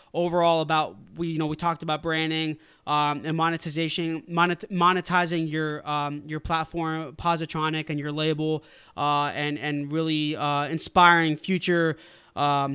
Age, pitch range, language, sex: 20-39, 150-180 Hz, English, male